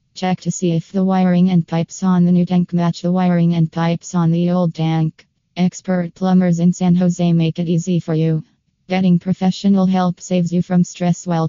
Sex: female